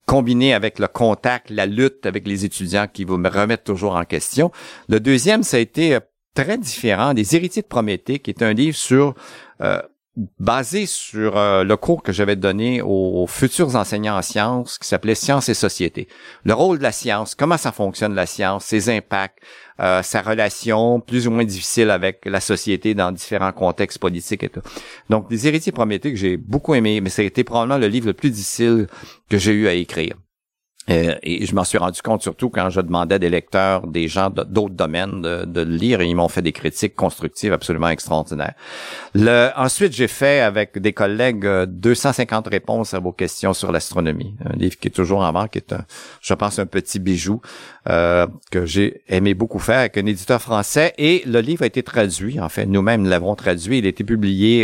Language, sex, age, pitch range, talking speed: French, male, 50-69, 95-120 Hz, 205 wpm